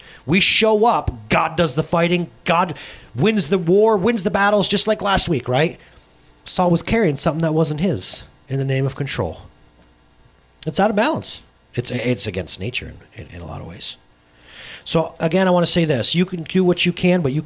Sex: male